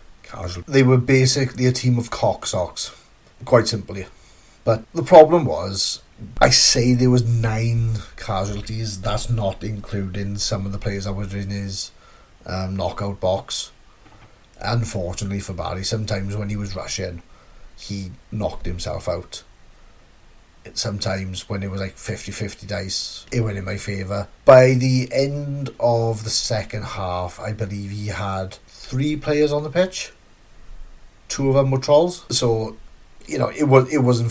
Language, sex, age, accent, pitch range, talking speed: English, male, 30-49, British, 100-130 Hz, 150 wpm